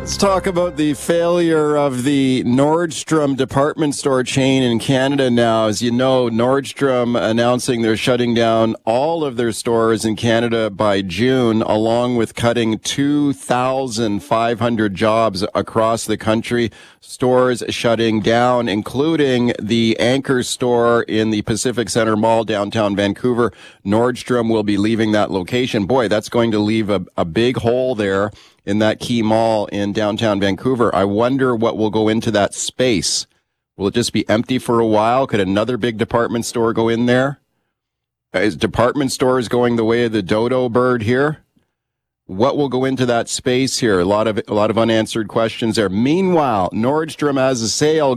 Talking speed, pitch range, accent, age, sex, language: 160 wpm, 110-130 Hz, American, 40-59, male, English